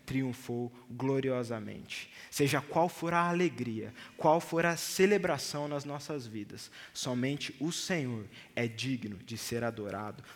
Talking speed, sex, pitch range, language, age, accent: 125 wpm, male, 125-170 Hz, Portuguese, 20-39, Brazilian